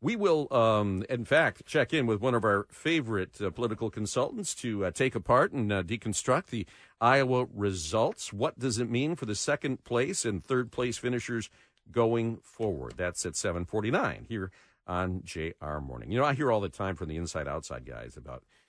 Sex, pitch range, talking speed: male, 85-125 Hz, 185 wpm